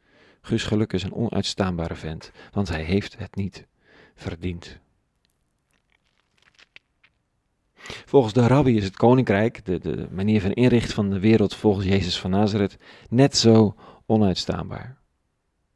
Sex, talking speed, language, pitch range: male, 125 wpm, Dutch, 95-120 Hz